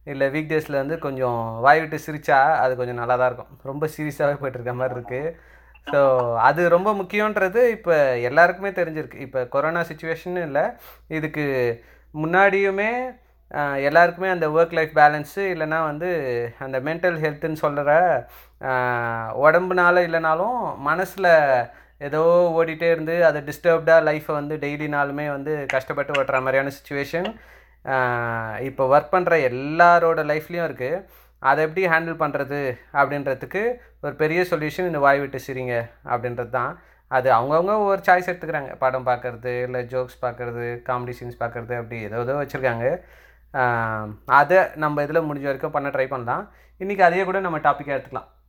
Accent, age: native, 30-49